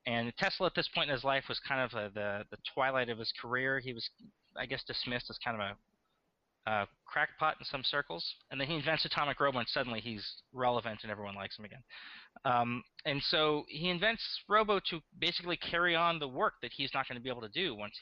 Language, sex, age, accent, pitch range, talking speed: English, male, 20-39, American, 110-155 Hz, 230 wpm